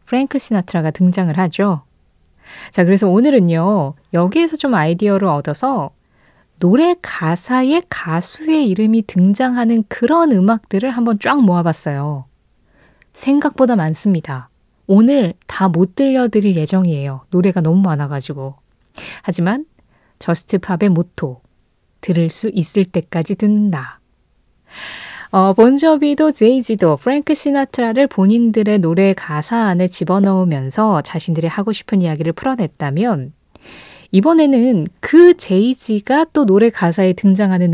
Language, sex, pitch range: Korean, female, 165-240 Hz